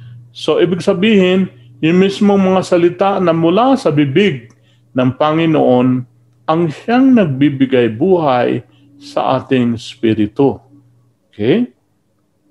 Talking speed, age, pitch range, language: 100 wpm, 40-59, 120-180 Hz, Filipino